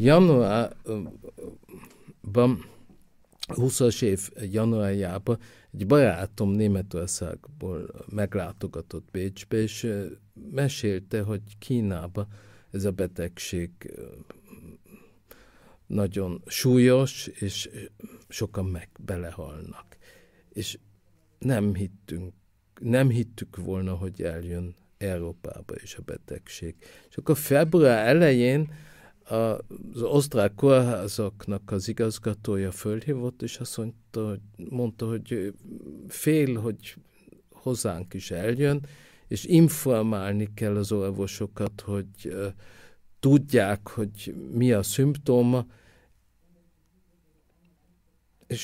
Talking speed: 85 wpm